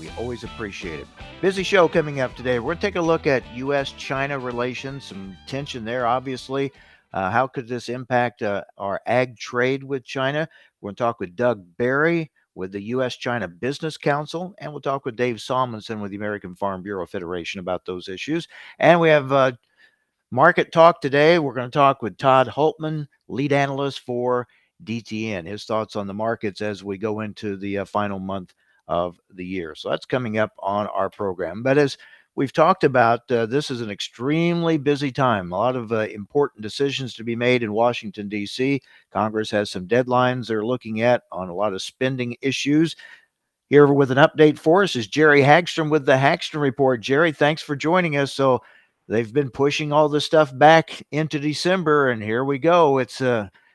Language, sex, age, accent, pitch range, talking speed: English, male, 50-69, American, 110-145 Hz, 190 wpm